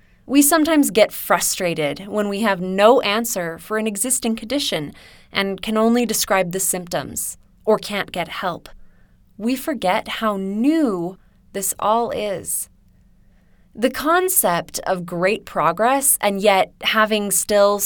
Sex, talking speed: female, 130 wpm